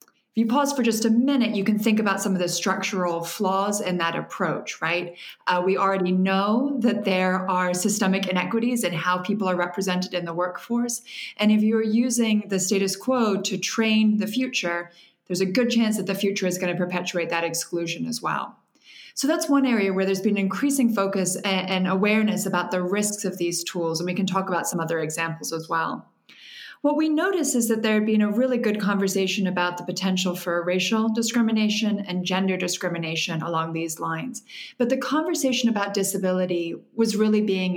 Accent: American